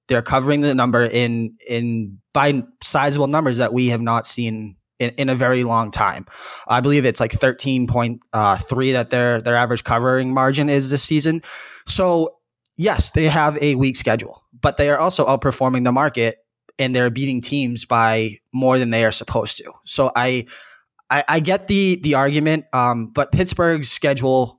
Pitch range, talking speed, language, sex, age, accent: 115-140 Hz, 180 wpm, English, male, 20-39, American